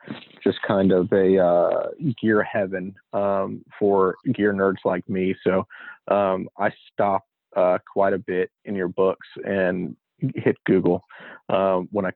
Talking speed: 150 wpm